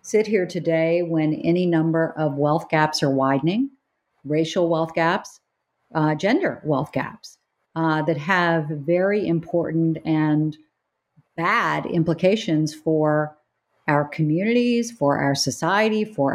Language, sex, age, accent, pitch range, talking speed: English, female, 50-69, American, 145-185 Hz, 120 wpm